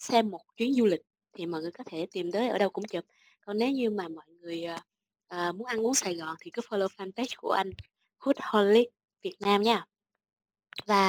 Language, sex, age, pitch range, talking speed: Vietnamese, female, 20-39, 190-245 Hz, 210 wpm